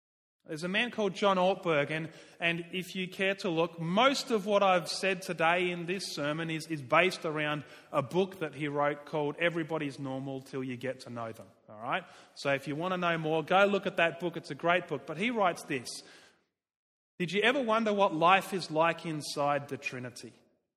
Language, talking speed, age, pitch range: English, 210 wpm, 30-49, 160-225 Hz